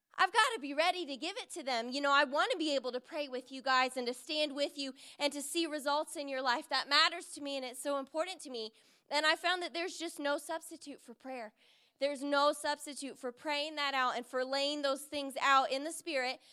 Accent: American